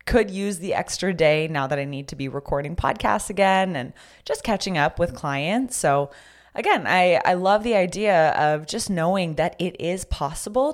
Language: English